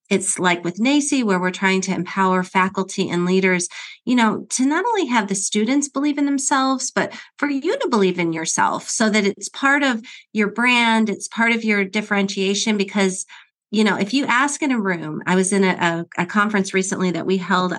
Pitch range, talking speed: 175-215 Hz, 205 wpm